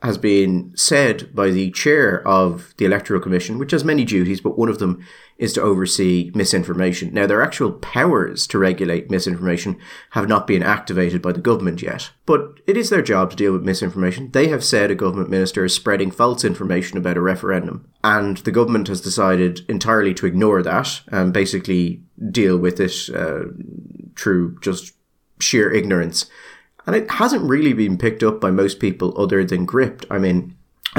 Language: English